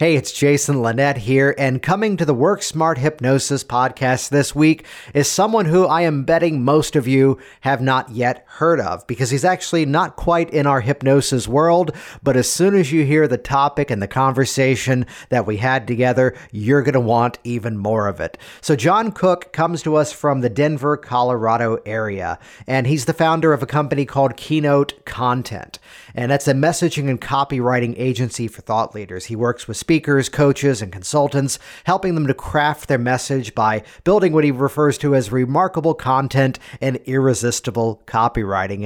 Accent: American